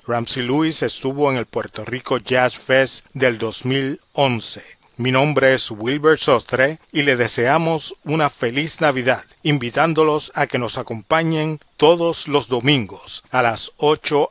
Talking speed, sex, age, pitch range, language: 140 wpm, male, 40-59, 125-145 Hz, Spanish